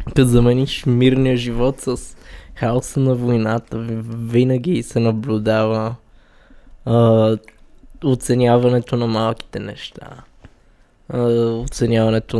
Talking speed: 75 wpm